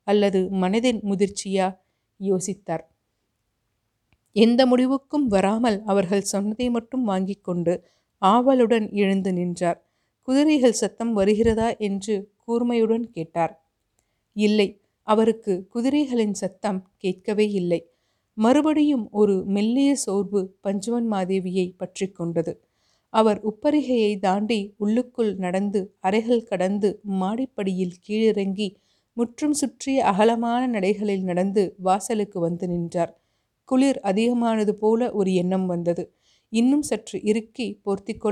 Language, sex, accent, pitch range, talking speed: Tamil, female, native, 190-230 Hz, 95 wpm